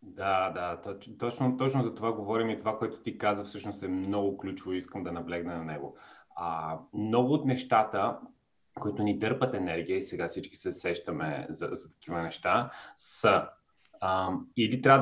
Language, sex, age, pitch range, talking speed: Bulgarian, male, 30-49, 100-130 Hz, 170 wpm